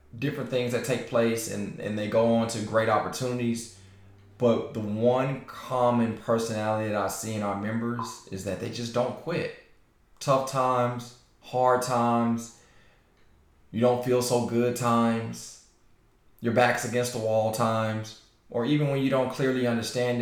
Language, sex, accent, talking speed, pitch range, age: English, male, American, 155 wpm, 105-120 Hz, 20-39